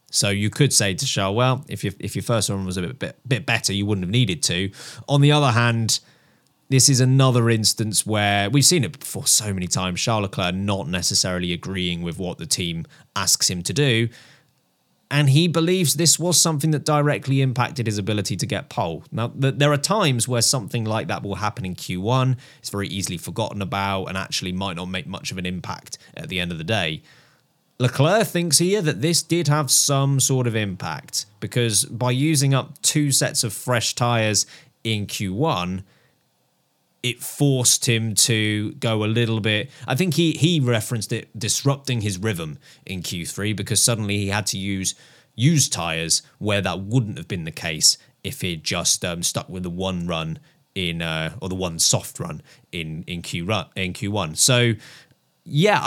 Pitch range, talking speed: 100-140 Hz, 190 wpm